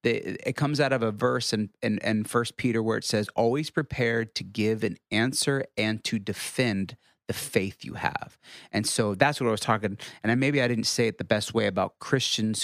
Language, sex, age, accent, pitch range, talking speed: English, male, 30-49, American, 105-125 Hz, 215 wpm